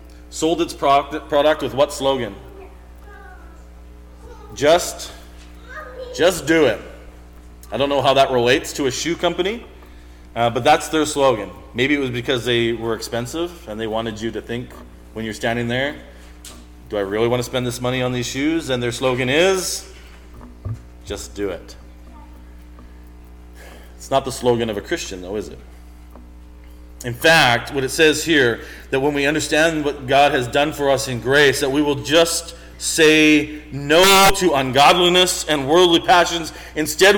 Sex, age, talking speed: male, 40-59, 160 wpm